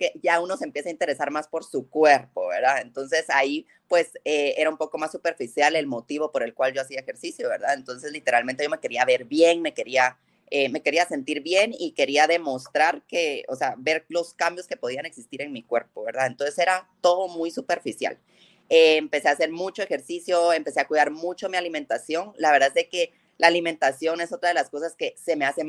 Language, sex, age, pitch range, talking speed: English, female, 20-39, 150-195 Hz, 215 wpm